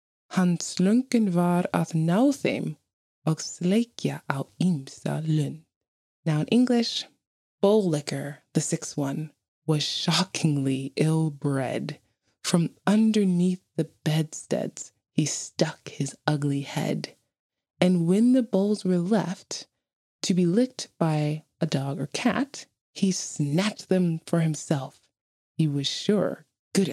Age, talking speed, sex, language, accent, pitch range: 20-39, 110 wpm, female, English, American, 150-180 Hz